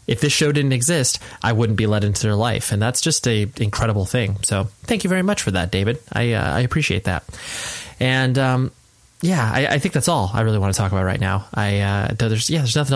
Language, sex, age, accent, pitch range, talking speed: English, male, 20-39, American, 105-130 Hz, 250 wpm